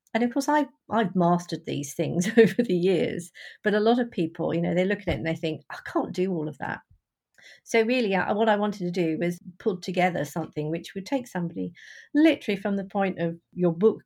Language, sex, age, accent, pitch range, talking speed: English, female, 50-69, British, 170-225 Hz, 220 wpm